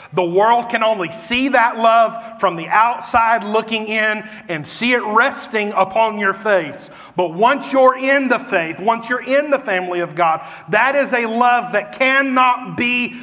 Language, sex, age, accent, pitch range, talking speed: English, male, 40-59, American, 190-250 Hz, 175 wpm